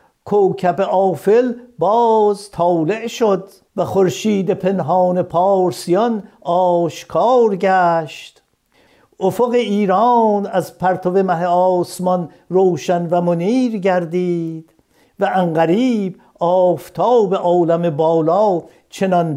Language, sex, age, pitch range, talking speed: Persian, male, 60-79, 165-195 Hz, 85 wpm